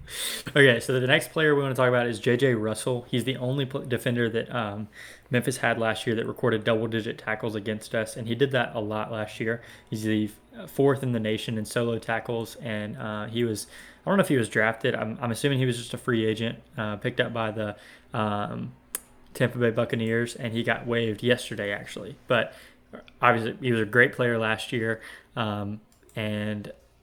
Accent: American